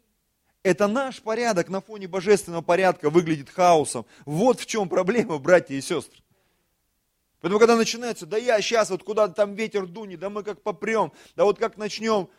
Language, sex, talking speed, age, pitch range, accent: Russian, male, 175 wpm, 30-49, 175-225 Hz, native